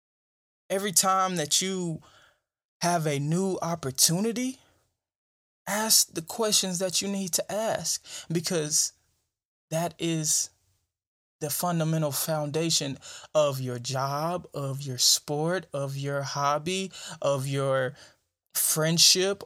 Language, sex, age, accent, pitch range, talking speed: English, male, 20-39, American, 135-195 Hz, 105 wpm